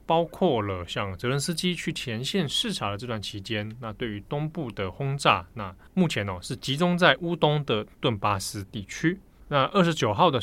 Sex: male